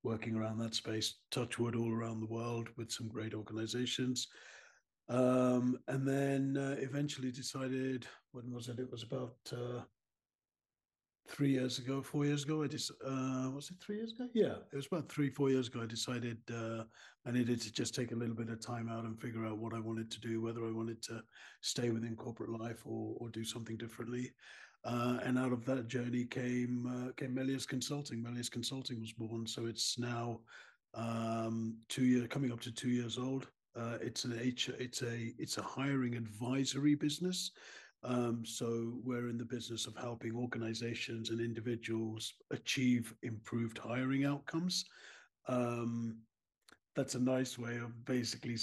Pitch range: 115-130 Hz